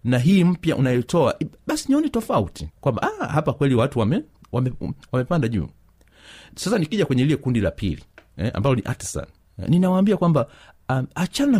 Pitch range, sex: 105-160 Hz, male